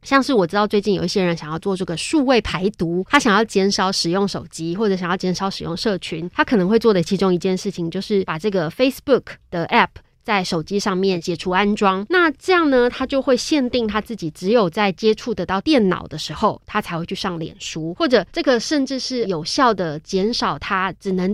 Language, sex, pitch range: Chinese, female, 175-235 Hz